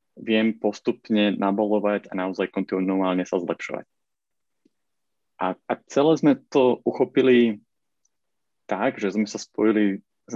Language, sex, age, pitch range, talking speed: Slovak, male, 30-49, 95-105 Hz, 115 wpm